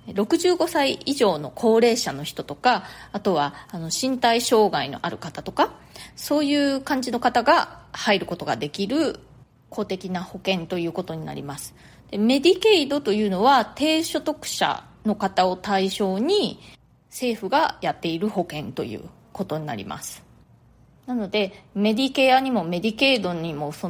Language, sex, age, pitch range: Japanese, female, 30-49, 180-260 Hz